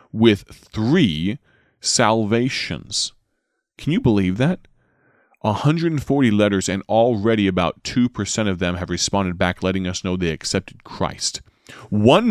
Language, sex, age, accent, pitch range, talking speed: English, male, 30-49, American, 100-140 Hz, 120 wpm